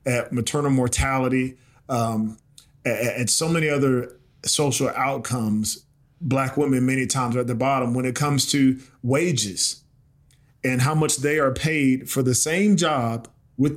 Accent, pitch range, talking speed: American, 125-145 Hz, 155 wpm